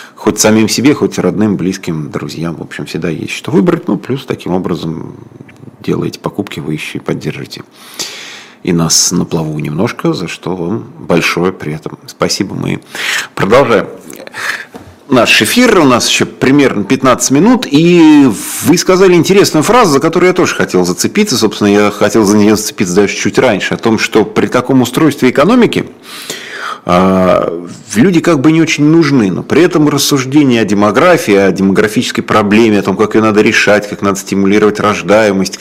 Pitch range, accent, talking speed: 100-140 Hz, native, 165 wpm